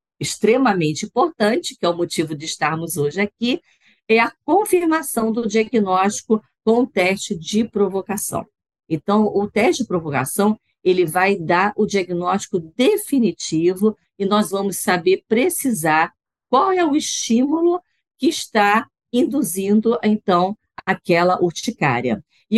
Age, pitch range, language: 50-69, 175-240 Hz, Portuguese